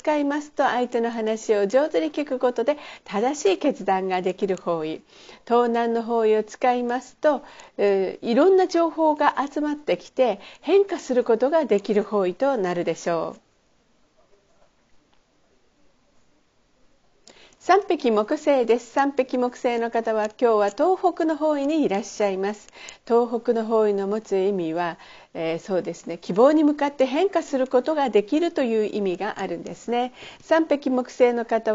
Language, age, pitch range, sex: Japanese, 50-69, 210-300 Hz, female